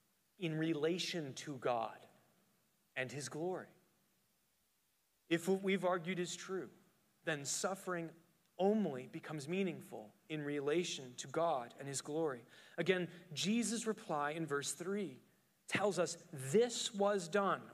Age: 30-49